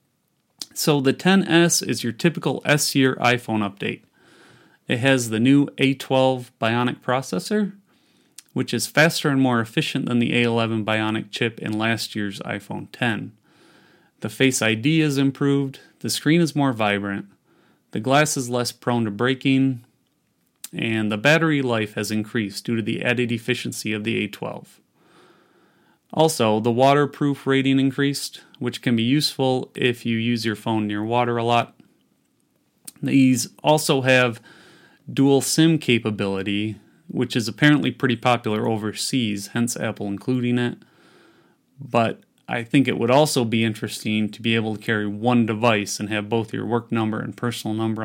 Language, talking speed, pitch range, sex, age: English, 150 wpm, 115-140 Hz, male, 30-49